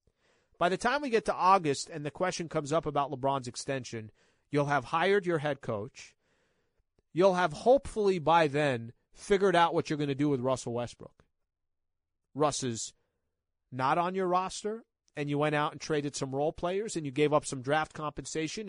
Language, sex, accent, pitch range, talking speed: English, male, American, 125-160 Hz, 185 wpm